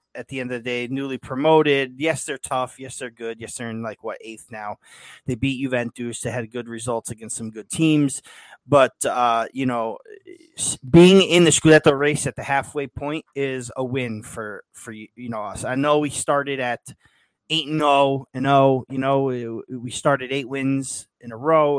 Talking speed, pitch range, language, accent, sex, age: 200 wpm, 115-145 Hz, English, American, male, 20-39